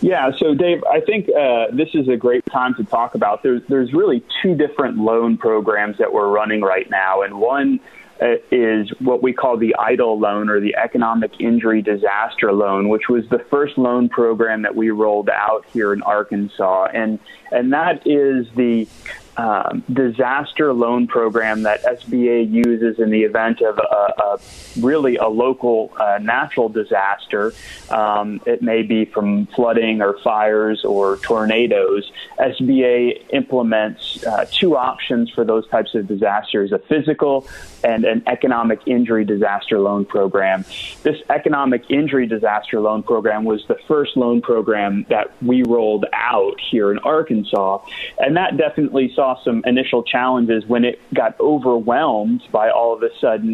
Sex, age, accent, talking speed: male, 30-49, American, 160 wpm